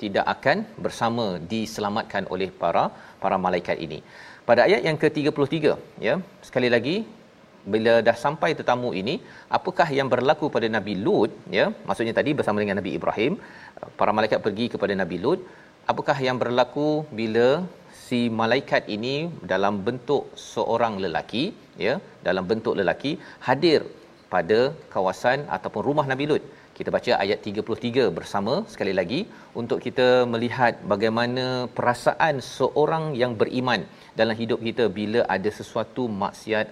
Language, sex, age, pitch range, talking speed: Malayalam, male, 40-59, 110-125 Hz, 135 wpm